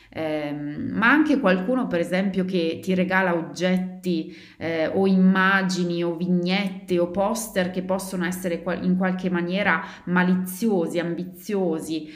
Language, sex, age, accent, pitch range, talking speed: Italian, female, 30-49, native, 160-185 Hz, 125 wpm